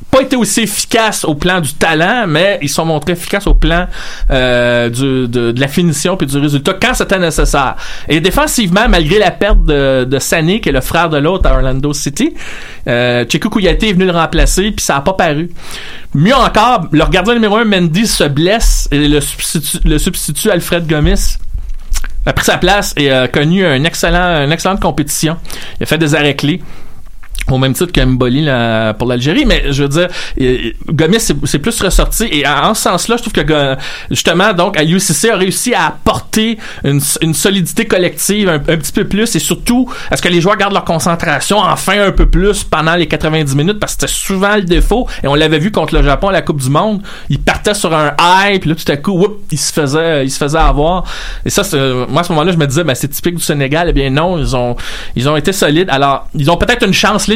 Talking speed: 220 wpm